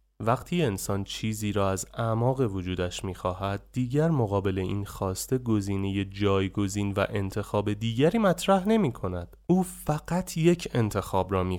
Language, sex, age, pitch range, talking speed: Persian, male, 20-39, 100-145 Hz, 140 wpm